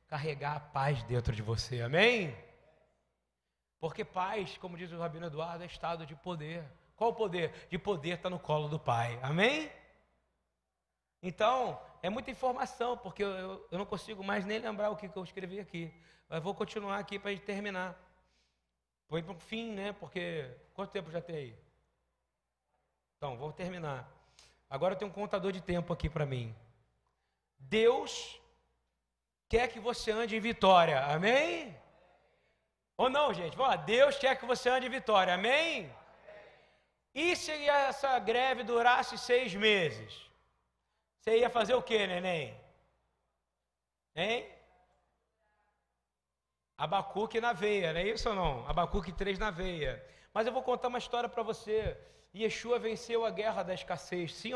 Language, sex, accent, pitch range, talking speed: Portuguese, male, Brazilian, 150-225 Hz, 155 wpm